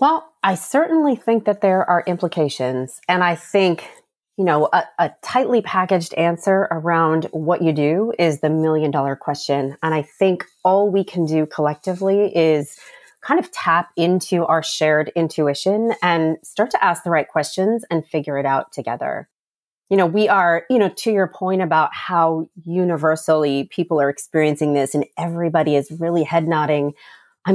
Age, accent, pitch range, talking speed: 30-49, American, 155-190 Hz, 170 wpm